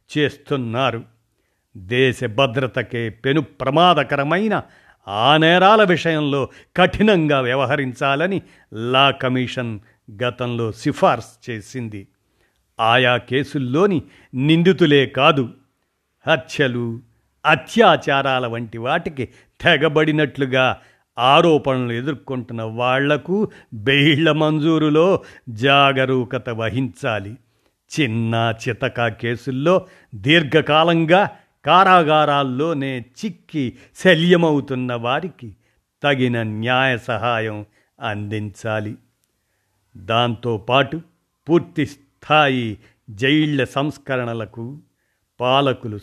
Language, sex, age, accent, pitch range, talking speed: Telugu, male, 50-69, native, 120-155 Hz, 65 wpm